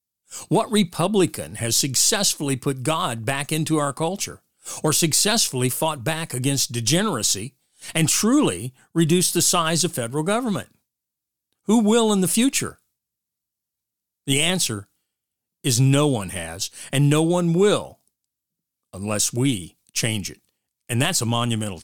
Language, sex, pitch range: English, male, 120-170 Hz